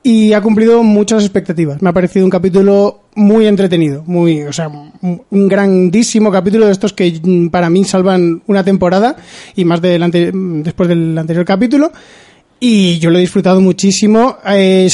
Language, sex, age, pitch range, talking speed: Spanish, male, 20-39, 175-200 Hz, 165 wpm